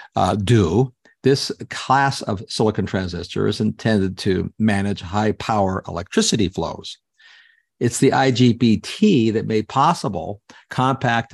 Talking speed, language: 115 wpm, English